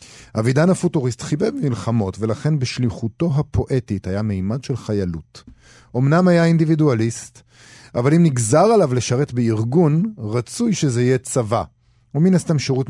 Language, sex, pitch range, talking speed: Hebrew, male, 110-145 Hz, 125 wpm